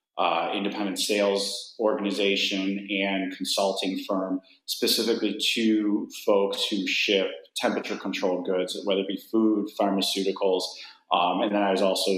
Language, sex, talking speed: English, male, 130 wpm